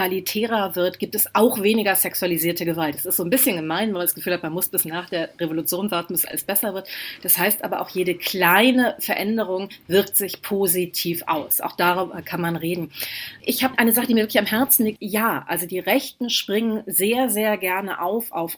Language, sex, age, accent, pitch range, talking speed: German, female, 30-49, German, 175-220 Hz, 210 wpm